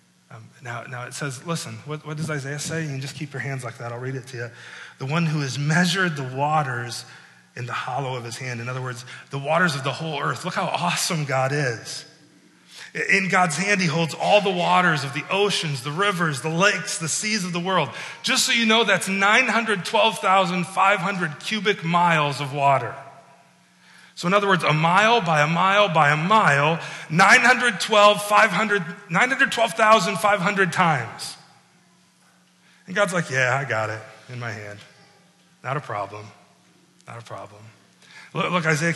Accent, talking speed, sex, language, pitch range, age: American, 175 wpm, male, English, 140-195 Hz, 30-49